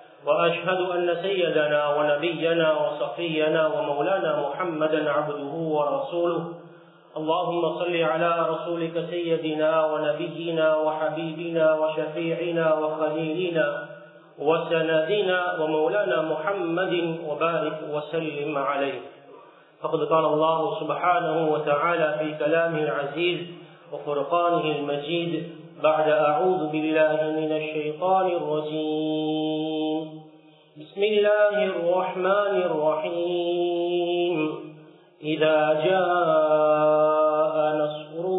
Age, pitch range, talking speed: 40-59, 155-175 Hz, 75 wpm